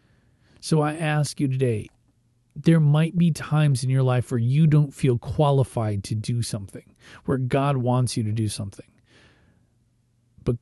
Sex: male